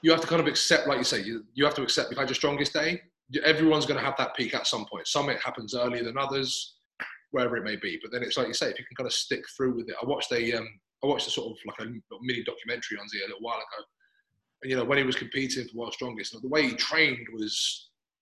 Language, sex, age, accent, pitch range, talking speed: English, male, 20-39, British, 125-155 Hz, 295 wpm